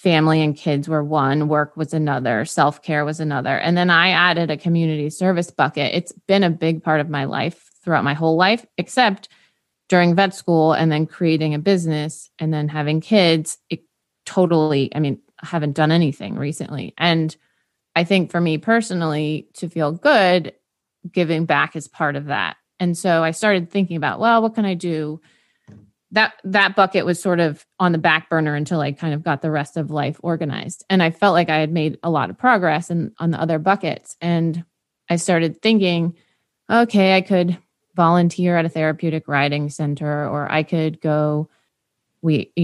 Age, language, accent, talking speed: 20-39, English, American, 185 wpm